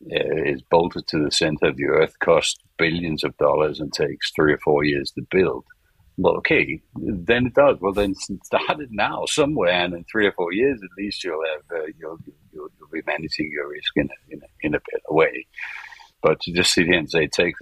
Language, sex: English, male